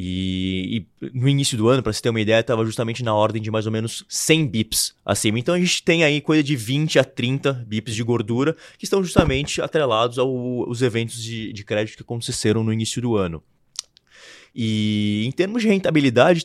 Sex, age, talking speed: male, 20-39, 205 wpm